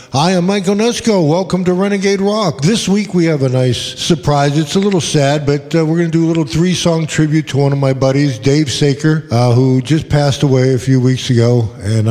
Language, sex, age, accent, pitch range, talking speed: English, male, 50-69, American, 125-150 Hz, 230 wpm